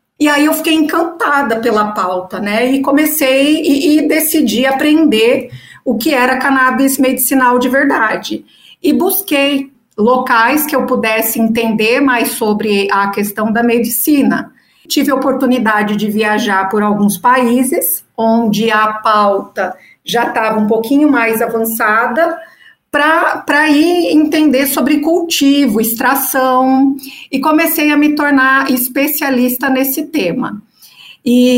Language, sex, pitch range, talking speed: Portuguese, female, 220-285 Hz, 125 wpm